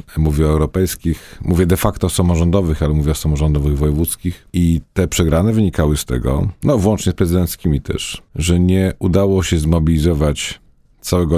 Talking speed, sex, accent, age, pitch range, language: 160 wpm, male, native, 40-59, 80-100 Hz, Polish